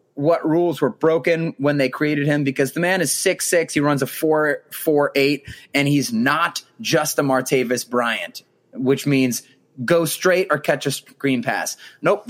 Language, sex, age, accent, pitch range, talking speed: English, male, 30-49, American, 130-175 Hz, 180 wpm